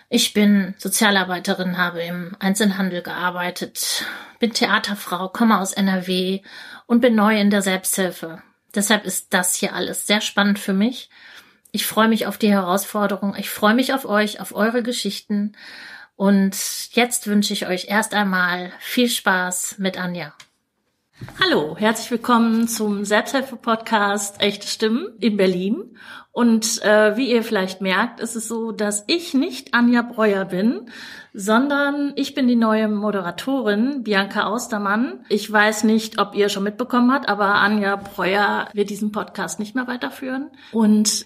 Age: 30-49